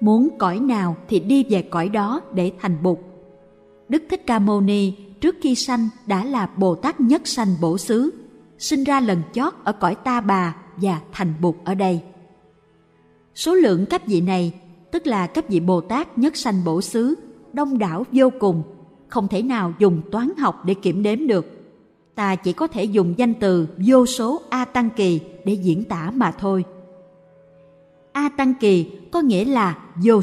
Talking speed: 185 wpm